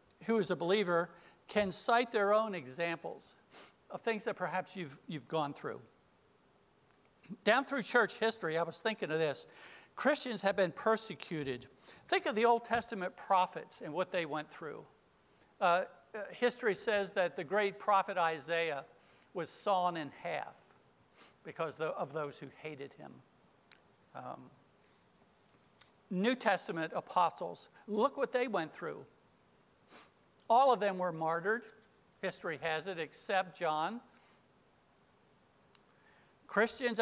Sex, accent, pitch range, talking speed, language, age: male, American, 160-215 Hz, 130 wpm, English, 60-79